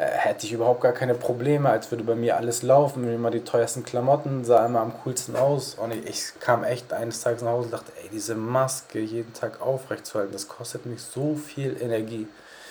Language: German